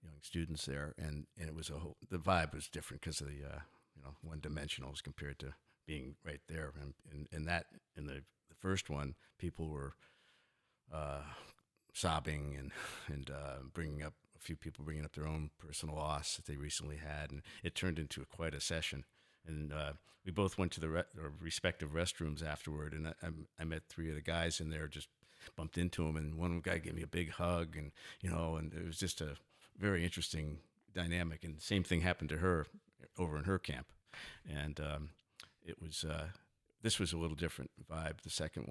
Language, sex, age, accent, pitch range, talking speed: English, male, 50-69, American, 75-85 Hz, 205 wpm